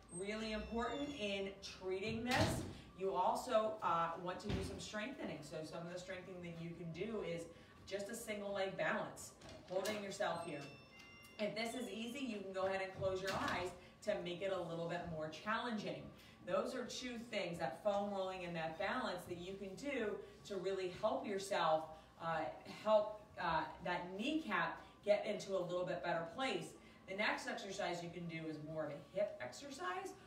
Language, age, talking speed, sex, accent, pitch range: English, 30-49, 185 wpm, female, American, 165-205 Hz